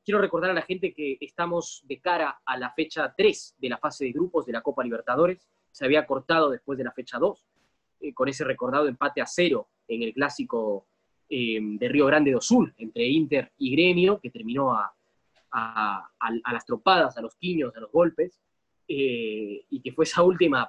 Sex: male